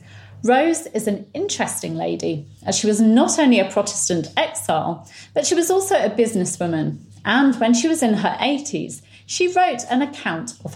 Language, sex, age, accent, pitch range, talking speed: English, female, 40-59, British, 160-250 Hz, 175 wpm